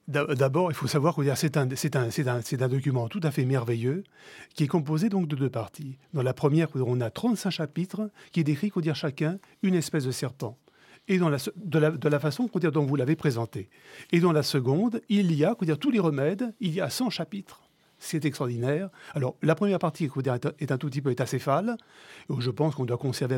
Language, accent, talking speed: French, French, 215 wpm